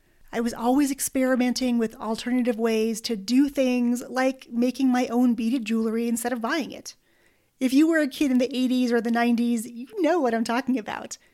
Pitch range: 230-275 Hz